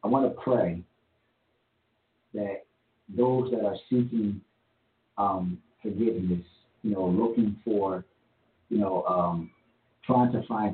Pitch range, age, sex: 100-120 Hz, 50-69, male